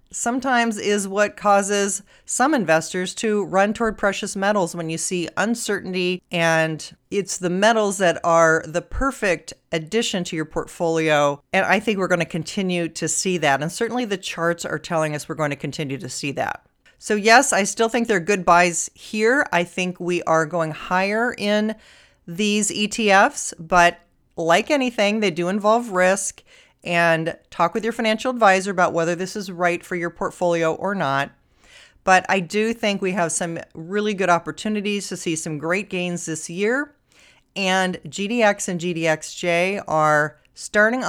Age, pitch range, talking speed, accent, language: 40-59, 170-215 Hz, 170 wpm, American, English